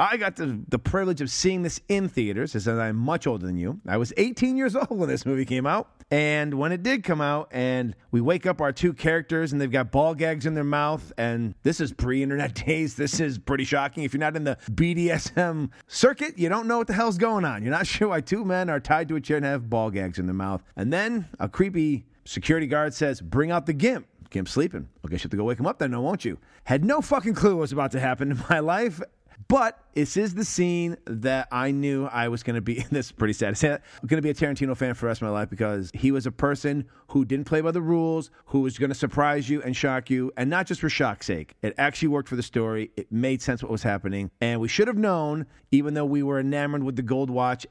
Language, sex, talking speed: English, male, 260 wpm